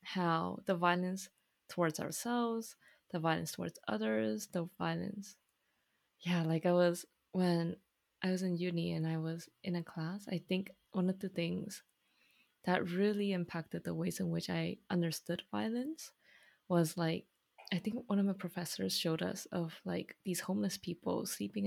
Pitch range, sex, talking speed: 165-190 Hz, female, 160 wpm